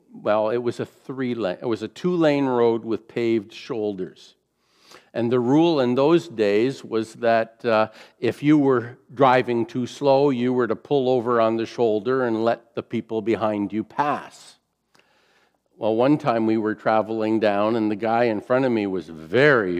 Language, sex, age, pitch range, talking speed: English, male, 50-69, 105-130 Hz, 170 wpm